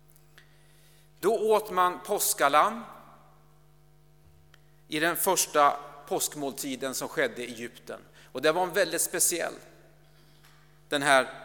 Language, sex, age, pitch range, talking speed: Swedish, male, 40-59, 135-160 Hz, 105 wpm